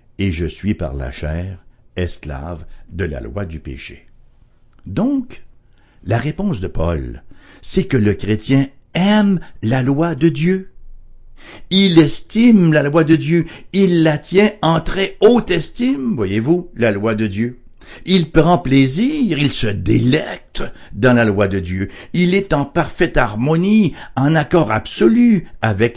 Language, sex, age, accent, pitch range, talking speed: English, male, 60-79, French, 105-160 Hz, 150 wpm